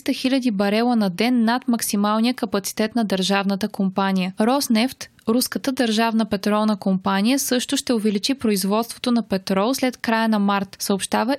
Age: 20-39